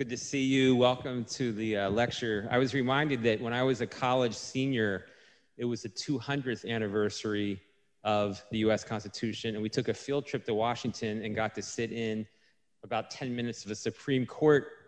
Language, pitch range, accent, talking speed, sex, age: English, 110-130 Hz, American, 195 wpm, male, 30-49